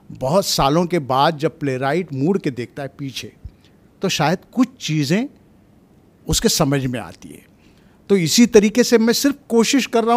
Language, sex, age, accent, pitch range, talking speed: Marathi, male, 50-69, native, 140-190 Hz, 170 wpm